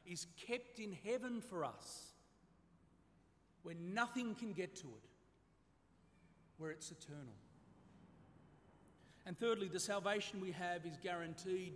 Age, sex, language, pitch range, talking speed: 40-59, male, English, 120-180 Hz, 115 wpm